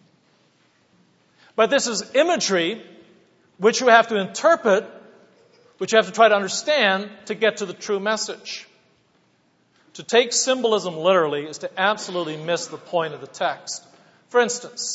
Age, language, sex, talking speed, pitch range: 40-59, English, male, 150 wpm, 175-235 Hz